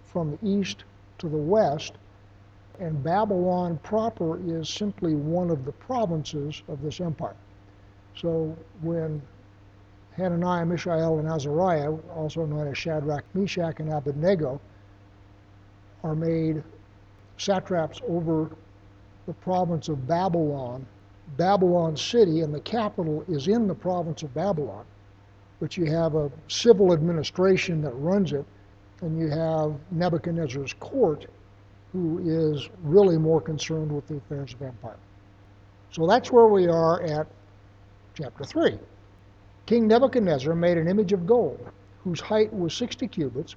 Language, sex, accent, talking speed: English, male, American, 130 wpm